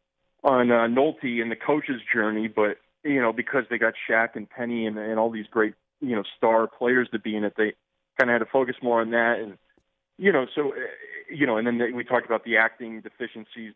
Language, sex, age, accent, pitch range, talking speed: English, male, 30-49, American, 110-135 Hz, 235 wpm